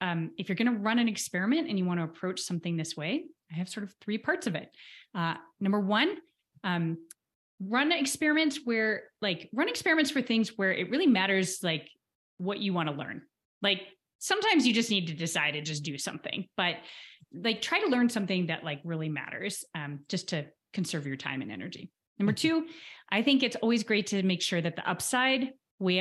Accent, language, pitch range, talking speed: American, English, 170-250 Hz, 205 wpm